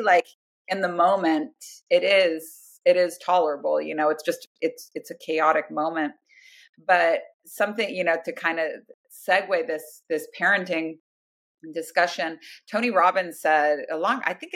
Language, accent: English, American